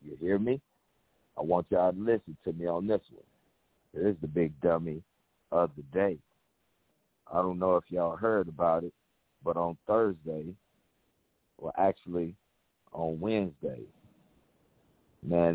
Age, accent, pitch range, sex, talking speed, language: 50-69, American, 90-135 Hz, male, 145 wpm, English